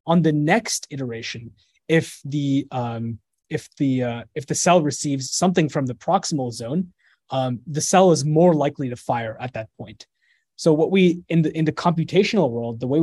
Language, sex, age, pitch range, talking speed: English, male, 20-39, 130-170 Hz, 190 wpm